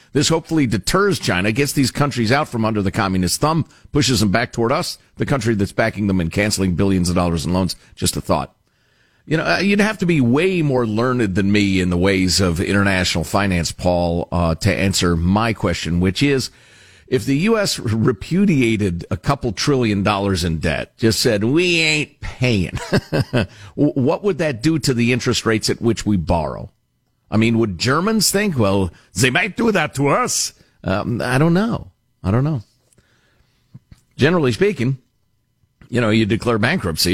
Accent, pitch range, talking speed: American, 95-135 Hz, 185 wpm